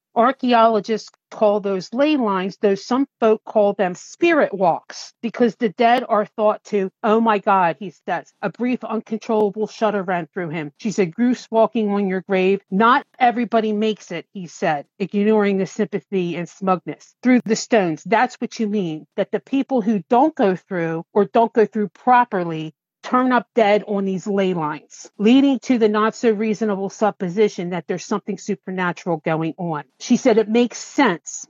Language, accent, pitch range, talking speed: English, American, 195-230 Hz, 175 wpm